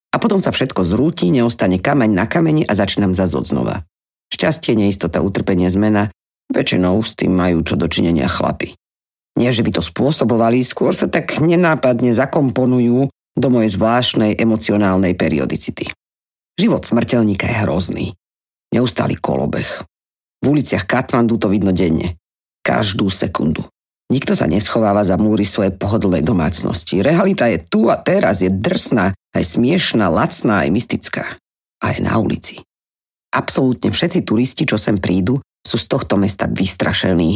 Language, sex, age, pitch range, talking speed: Slovak, female, 50-69, 90-125 Hz, 140 wpm